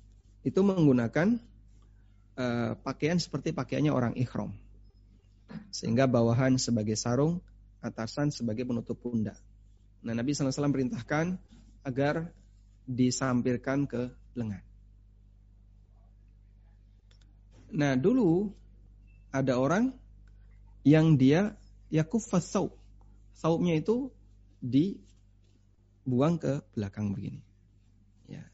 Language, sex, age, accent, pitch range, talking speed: Indonesian, male, 30-49, native, 100-140 Hz, 80 wpm